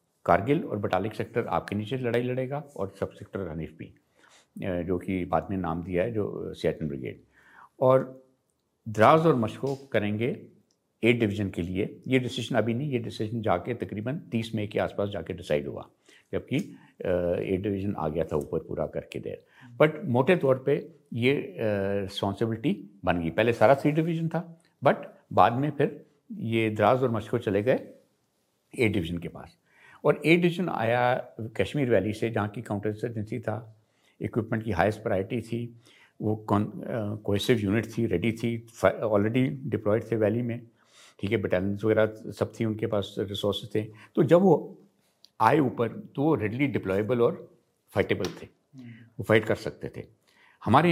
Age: 50-69